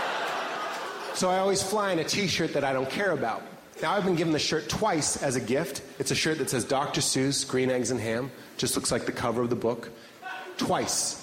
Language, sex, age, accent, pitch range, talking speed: English, male, 30-49, American, 135-195 Hz, 225 wpm